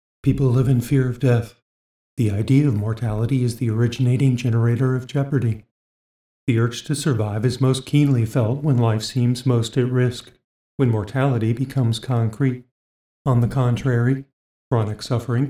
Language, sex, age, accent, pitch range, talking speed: English, male, 50-69, American, 115-135 Hz, 150 wpm